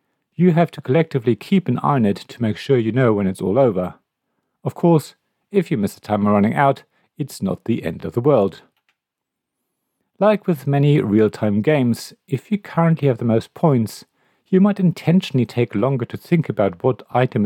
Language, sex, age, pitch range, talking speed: English, male, 50-69, 115-180 Hz, 195 wpm